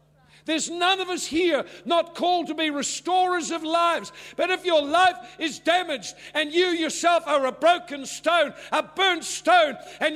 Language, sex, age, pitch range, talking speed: English, male, 60-79, 310-350 Hz, 170 wpm